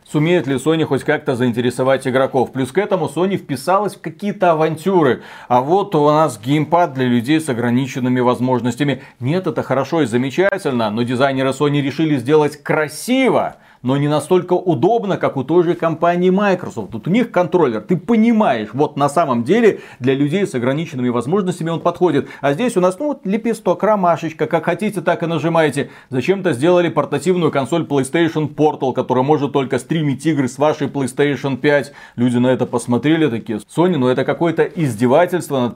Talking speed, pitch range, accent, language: 170 wpm, 135-180 Hz, native, Russian